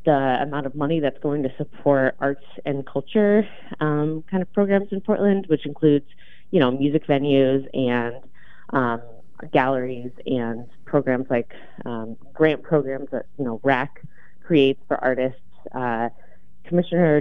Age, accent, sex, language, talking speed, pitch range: 30-49, American, female, English, 145 wpm, 130-160 Hz